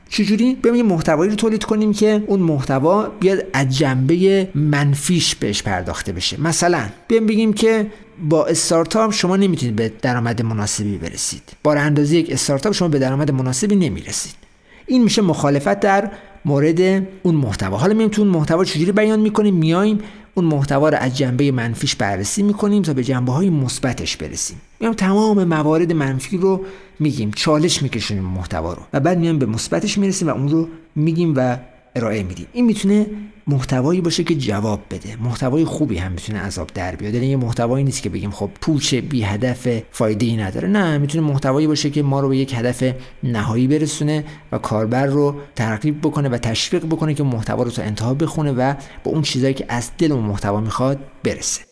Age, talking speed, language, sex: 50-69, 170 wpm, Persian, male